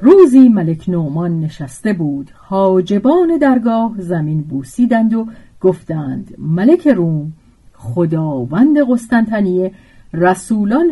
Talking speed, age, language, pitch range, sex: 90 wpm, 50-69, Persian, 160-255 Hz, female